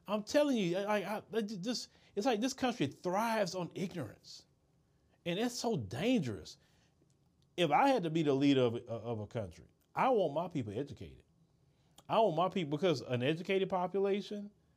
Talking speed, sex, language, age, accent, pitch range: 170 wpm, male, English, 40-59, American, 125-180 Hz